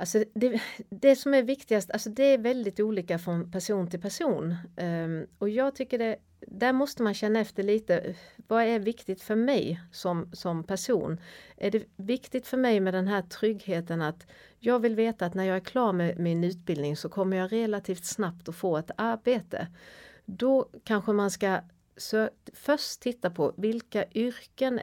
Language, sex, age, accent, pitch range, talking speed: Swedish, female, 40-59, native, 175-225 Hz, 180 wpm